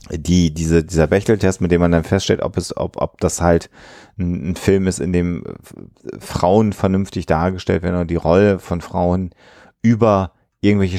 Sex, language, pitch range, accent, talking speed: male, German, 90-110 Hz, German, 175 wpm